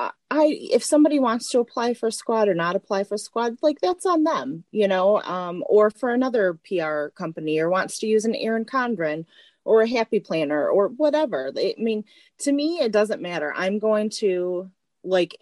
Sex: female